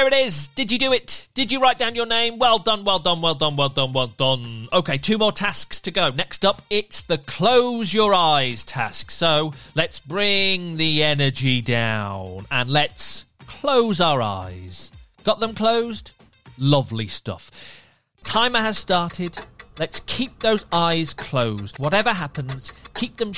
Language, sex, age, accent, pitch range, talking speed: English, male, 40-59, British, 125-205 Hz, 165 wpm